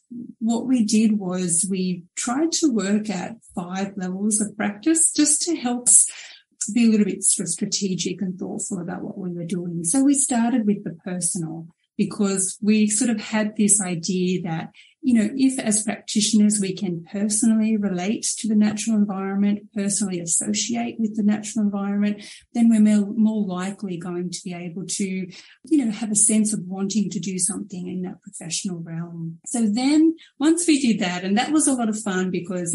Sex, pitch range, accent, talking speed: female, 190-230 Hz, Australian, 180 wpm